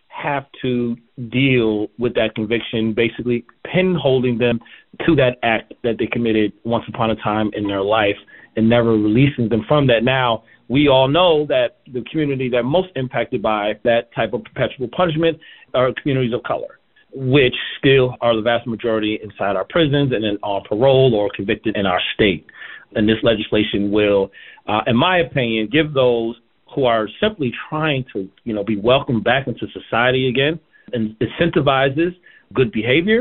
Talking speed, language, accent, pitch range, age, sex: 170 wpm, English, American, 110-140 Hz, 40-59, male